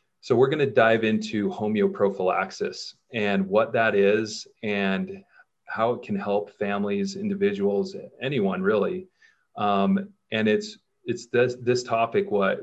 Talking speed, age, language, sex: 130 wpm, 30-49, English, male